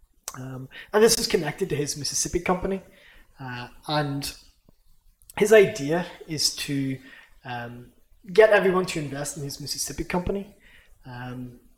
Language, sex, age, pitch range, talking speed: English, male, 20-39, 135-185 Hz, 125 wpm